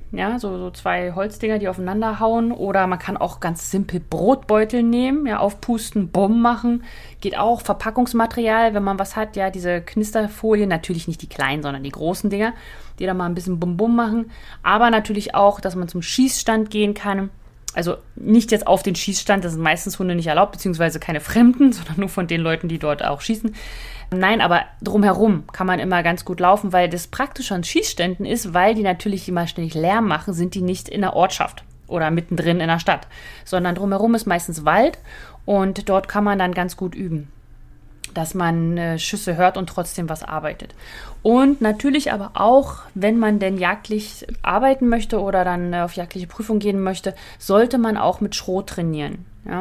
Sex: female